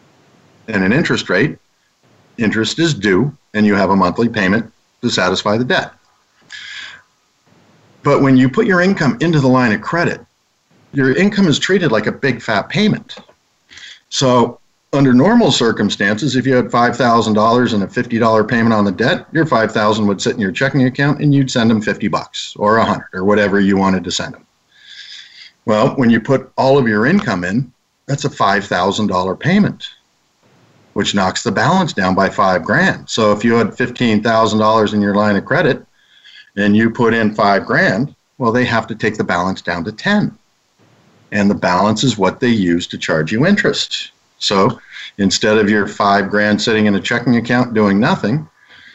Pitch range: 105-130 Hz